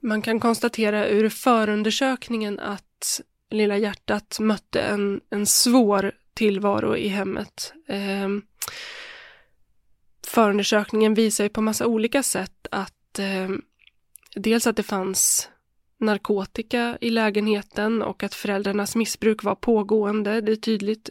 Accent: native